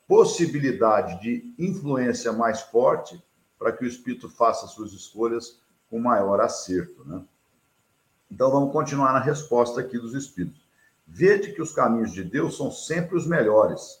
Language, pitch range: Portuguese, 115-160 Hz